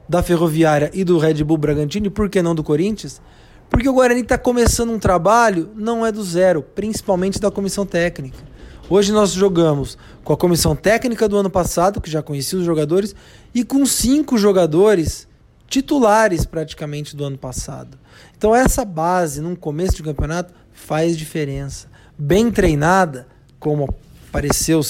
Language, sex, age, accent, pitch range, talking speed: Portuguese, male, 20-39, Brazilian, 150-200 Hz, 160 wpm